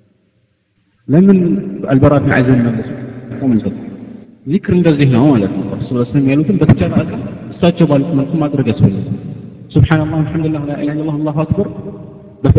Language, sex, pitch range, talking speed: Amharic, male, 110-155 Hz, 145 wpm